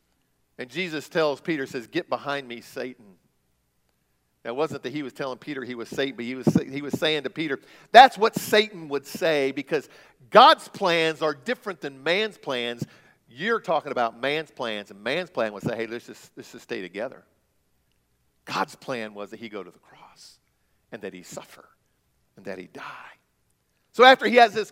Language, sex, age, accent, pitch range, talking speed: English, male, 50-69, American, 125-205 Hz, 190 wpm